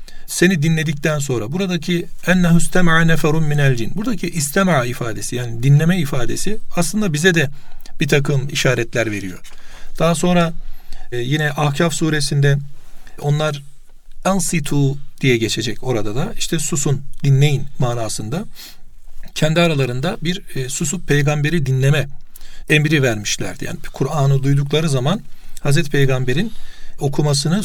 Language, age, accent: Turkish, 40-59, native